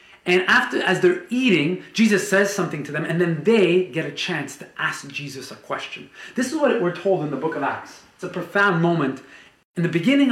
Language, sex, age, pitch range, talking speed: English, male, 30-49, 155-195 Hz, 220 wpm